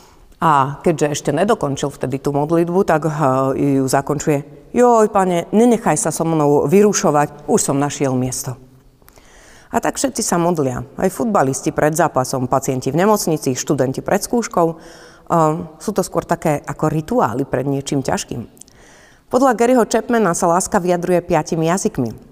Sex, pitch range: female, 145-195 Hz